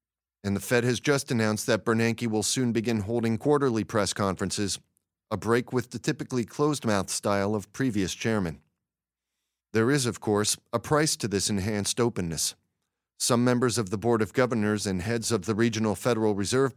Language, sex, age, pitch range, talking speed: English, male, 40-59, 105-125 Hz, 175 wpm